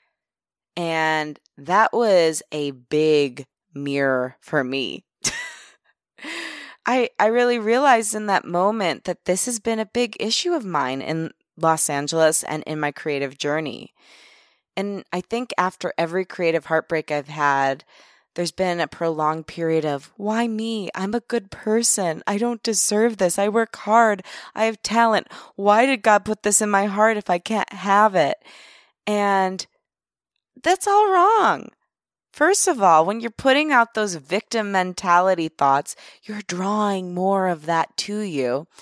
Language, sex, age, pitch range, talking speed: English, female, 20-39, 155-220 Hz, 150 wpm